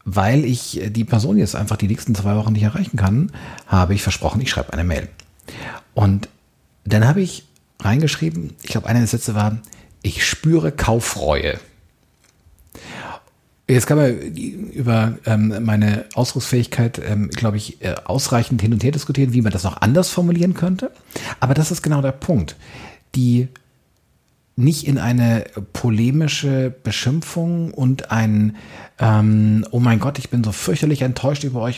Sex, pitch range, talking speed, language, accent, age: male, 105-145 Hz, 150 wpm, German, German, 50-69